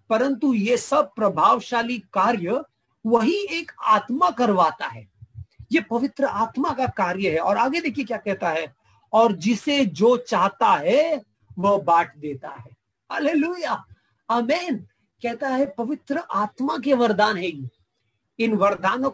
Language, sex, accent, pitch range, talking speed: English, male, Indian, 170-245 Hz, 130 wpm